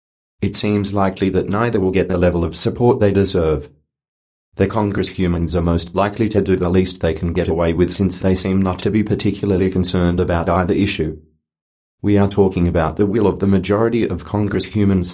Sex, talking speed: male, 200 wpm